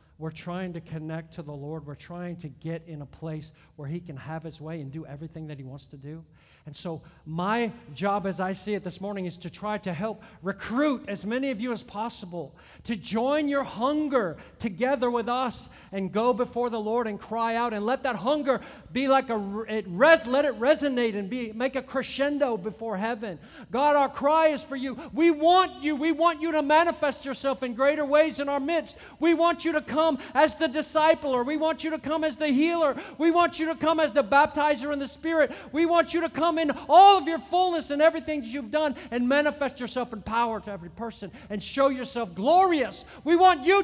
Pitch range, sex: 210-310 Hz, male